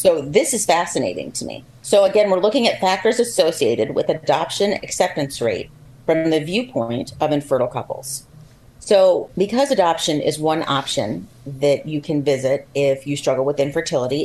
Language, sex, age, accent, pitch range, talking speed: English, female, 40-59, American, 140-175 Hz, 160 wpm